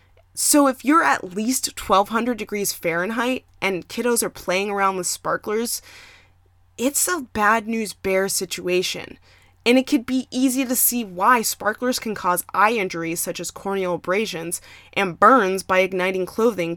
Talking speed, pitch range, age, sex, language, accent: 155 wpm, 170-245 Hz, 20-39, female, English, American